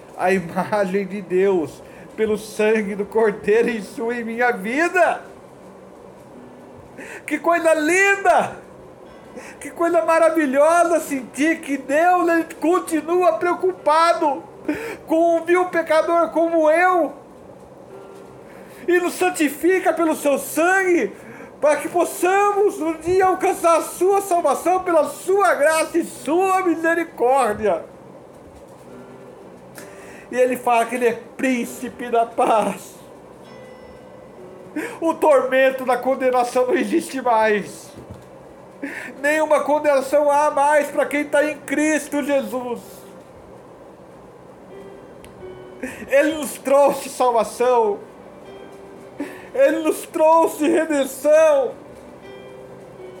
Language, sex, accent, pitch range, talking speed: Portuguese, male, Brazilian, 255-335 Hz, 95 wpm